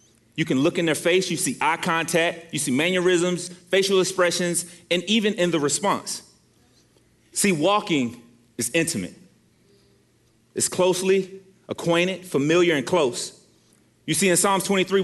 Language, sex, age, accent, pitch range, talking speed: English, male, 30-49, American, 135-185 Hz, 140 wpm